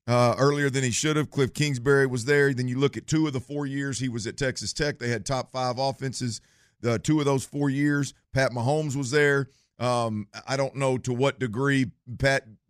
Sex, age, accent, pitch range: male, 50-69, American, 125-145 Hz